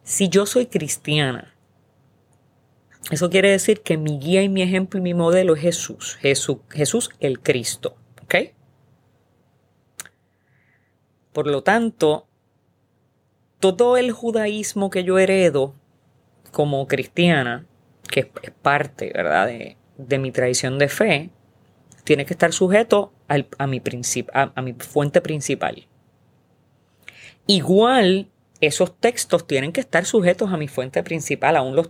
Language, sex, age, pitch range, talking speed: Spanish, female, 30-49, 140-195 Hz, 125 wpm